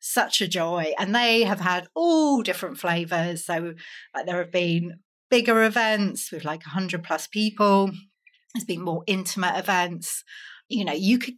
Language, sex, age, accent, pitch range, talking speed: English, female, 30-49, British, 170-195 Hz, 165 wpm